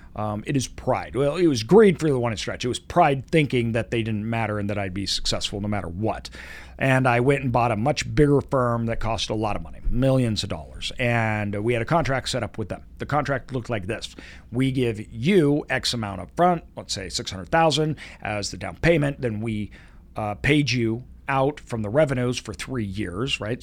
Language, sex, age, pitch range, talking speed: English, male, 40-59, 105-145 Hz, 220 wpm